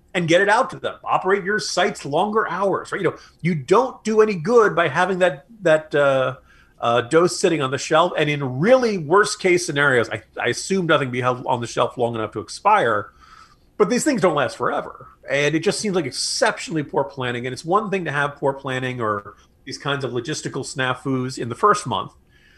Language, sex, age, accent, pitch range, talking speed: English, male, 40-59, American, 135-190 Hz, 215 wpm